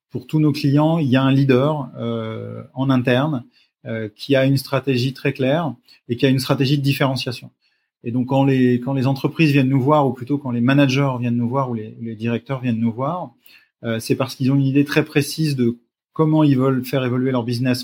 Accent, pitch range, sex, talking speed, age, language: French, 120-140 Hz, male, 225 wpm, 30-49, French